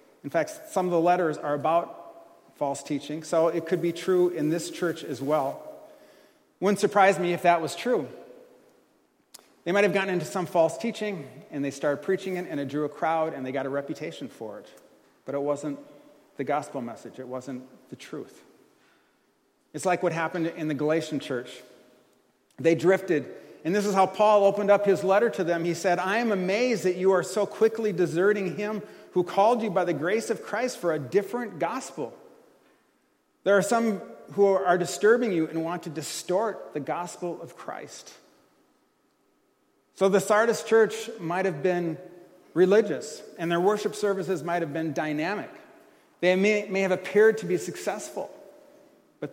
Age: 40-59